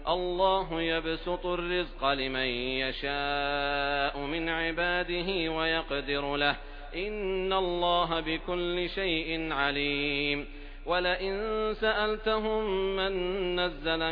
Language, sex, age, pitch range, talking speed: Hindi, male, 40-59, 145-180 Hz, 75 wpm